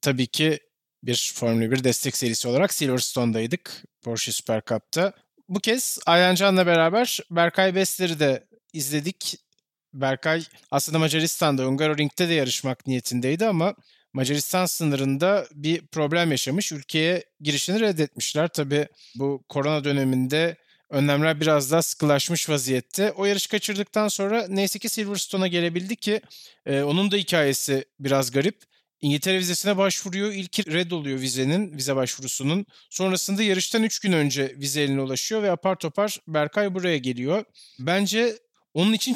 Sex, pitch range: male, 140-190 Hz